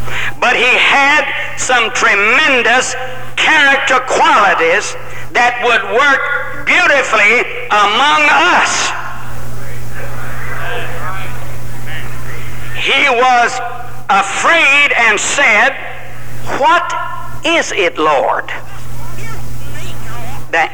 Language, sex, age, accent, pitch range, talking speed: English, male, 60-79, American, 180-270 Hz, 65 wpm